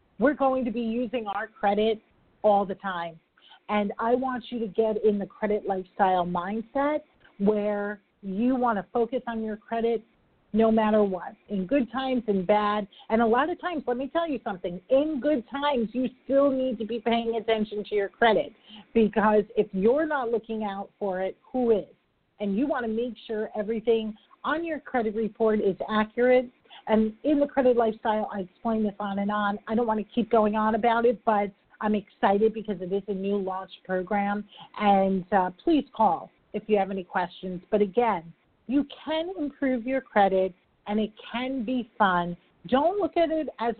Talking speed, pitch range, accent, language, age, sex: 190 wpm, 200-245 Hz, American, English, 40-59, female